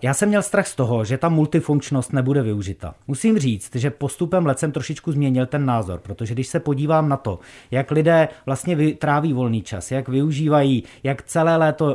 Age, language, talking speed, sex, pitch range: 30-49, Czech, 190 wpm, male, 115-155 Hz